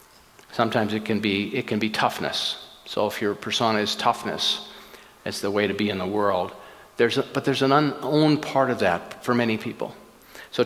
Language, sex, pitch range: English, male, 110-140 Hz